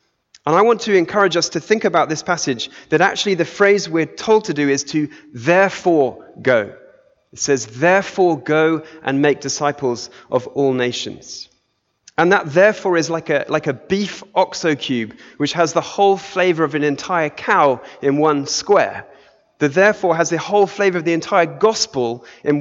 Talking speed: 180 wpm